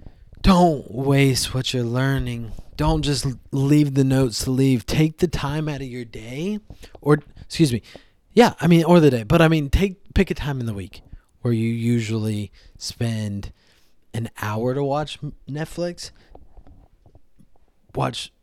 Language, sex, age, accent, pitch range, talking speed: English, male, 20-39, American, 110-140 Hz, 155 wpm